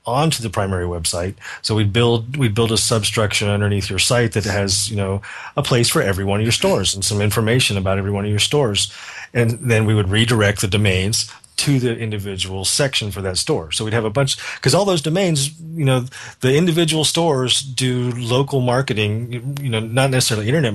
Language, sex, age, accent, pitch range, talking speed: English, male, 30-49, American, 100-125 Hz, 200 wpm